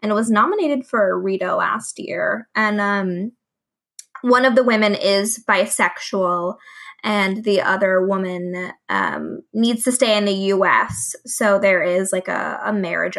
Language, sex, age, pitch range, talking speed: English, female, 20-39, 205-285 Hz, 160 wpm